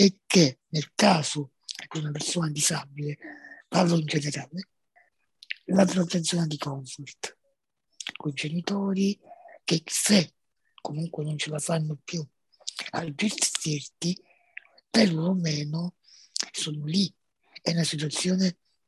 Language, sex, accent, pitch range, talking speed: Italian, male, native, 150-185 Hz, 105 wpm